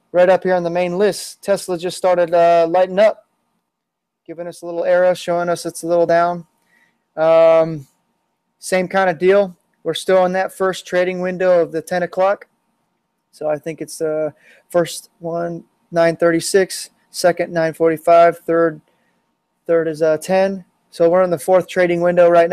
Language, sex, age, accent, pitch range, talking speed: English, male, 20-39, American, 165-185 Hz, 170 wpm